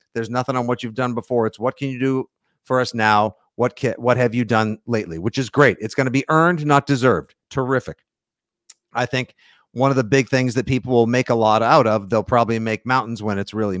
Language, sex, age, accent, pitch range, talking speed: English, male, 50-69, American, 115-140 Hz, 240 wpm